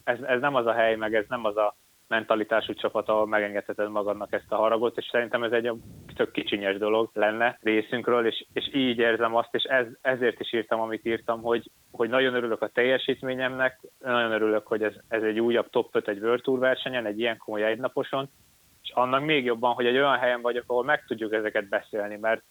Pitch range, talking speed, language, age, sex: 110-125 Hz, 210 wpm, Hungarian, 20-39, male